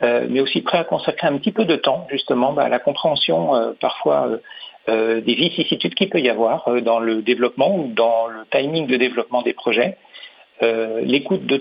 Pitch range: 120-150 Hz